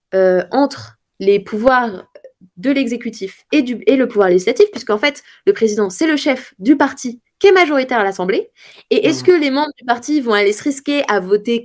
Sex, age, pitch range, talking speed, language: female, 20-39, 195-270 Hz, 200 wpm, French